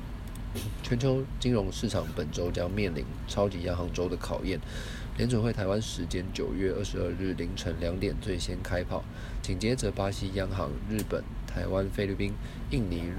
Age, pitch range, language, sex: 20-39, 95-115 Hz, Chinese, male